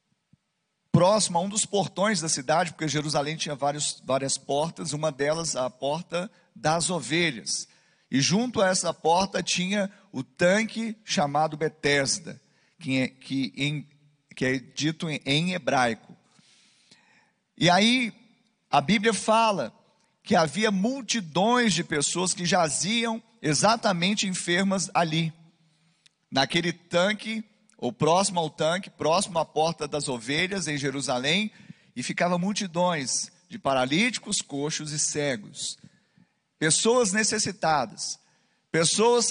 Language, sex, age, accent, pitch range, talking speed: Portuguese, male, 40-59, Brazilian, 145-195 Hz, 115 wpm